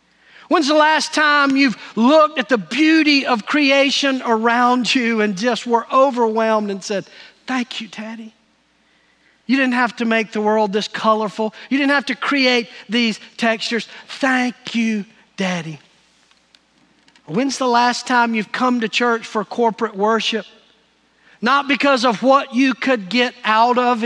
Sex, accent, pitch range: male, American, 220-275 Hz